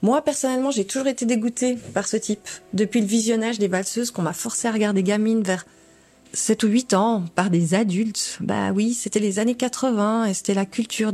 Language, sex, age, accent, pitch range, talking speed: French, female, 30-49, French, 195-245 Hz, 205 wpm